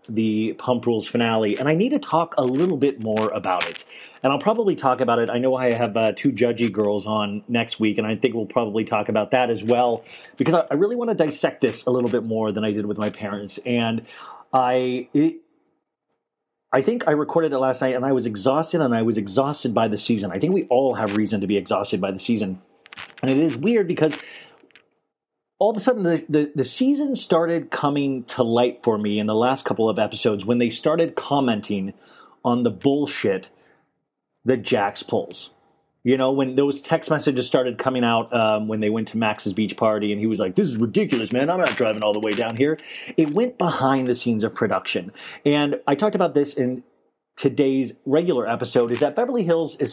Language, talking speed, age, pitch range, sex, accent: English, 220 wpm, 30-49, 110-150 Hz, male, American